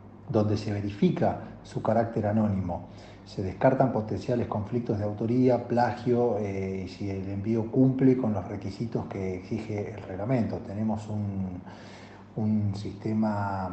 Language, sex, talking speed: Spanish, male, 130 wpm